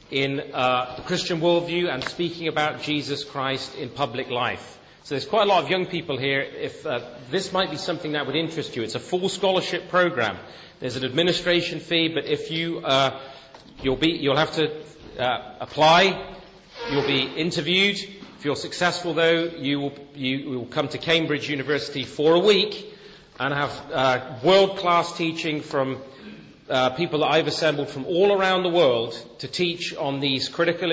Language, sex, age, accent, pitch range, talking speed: English, male, 40-59, British, 135-170 Hz, 175 wpm